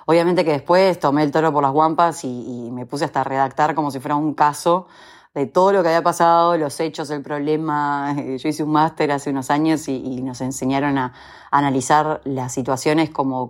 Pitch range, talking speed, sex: 140-165 Hz, 210 wpm, female